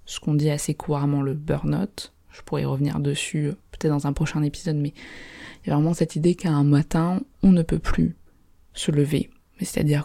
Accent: French